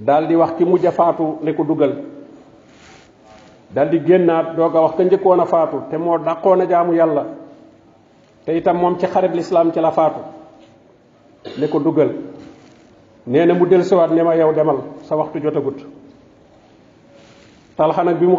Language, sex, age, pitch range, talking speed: French, male, 50-69, 160-180 Hz, 50 wpm